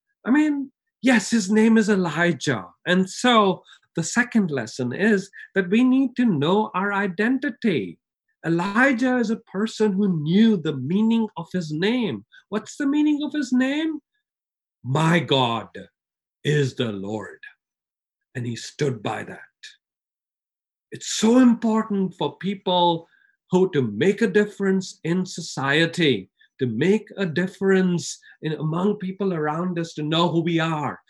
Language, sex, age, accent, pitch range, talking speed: English, male, 50-69, Indian, 165-250 Hz, 140 wpm